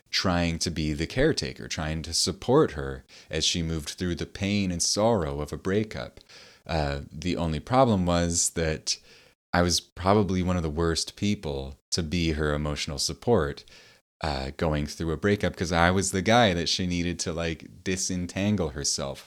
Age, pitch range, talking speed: 30-49, 75-95 Hz, 175 wpm